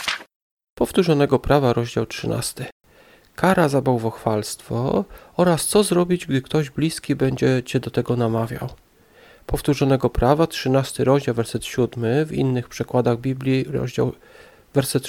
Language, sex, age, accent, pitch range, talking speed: Polish, male, 40-59, native, 125-150 Hz, 120 wpm